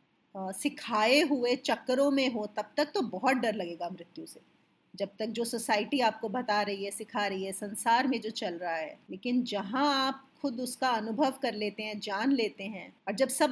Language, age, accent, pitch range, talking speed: English, 30-49, Indian, 210-275 Hz, 175 wpm